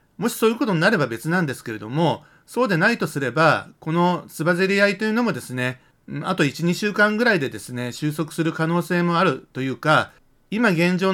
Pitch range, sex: 135-180 Hz, male